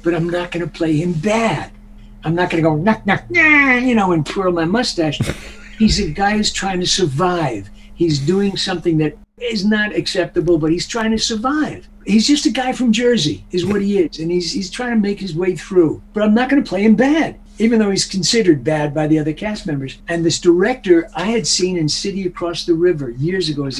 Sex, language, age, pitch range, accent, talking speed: male, English, 60-79, 140-195 Hz, American, 225 wpm